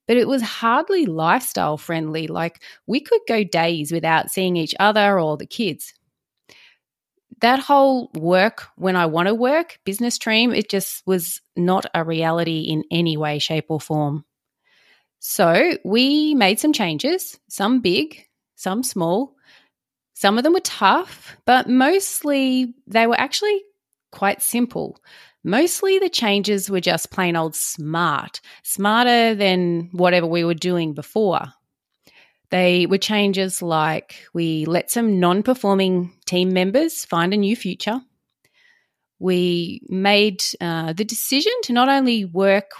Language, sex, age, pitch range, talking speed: English, female, 30-49, 175-250 Hz, 140 wpm